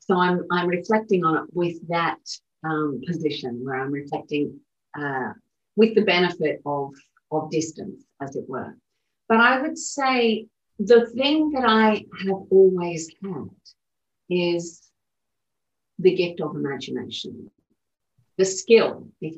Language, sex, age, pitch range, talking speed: English, female, 40-59, 165-220 Hz, 130 wpm